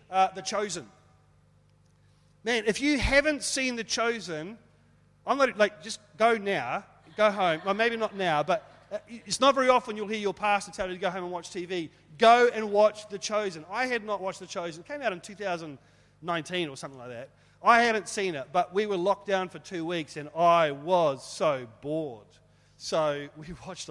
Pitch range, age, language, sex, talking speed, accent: 160-215 Hz, 30-49, English, male, 200 wpm, Australian